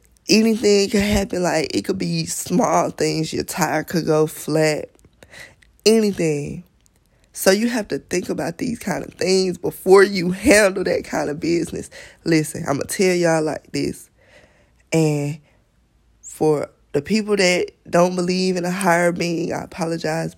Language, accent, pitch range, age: English, American, 155-190 Hz, 20-39